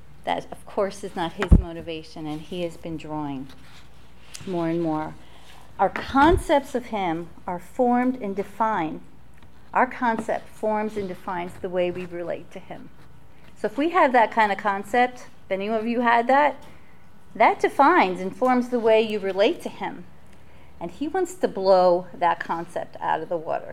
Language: English